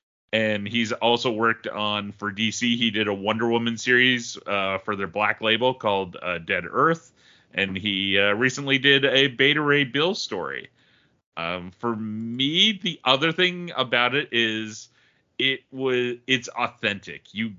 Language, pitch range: English, 100-130 Hz